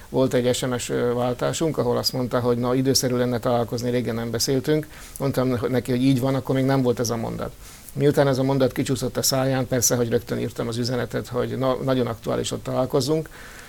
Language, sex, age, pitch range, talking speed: Hungarian, male, 60-79, 120-135 Hz, 200 wpm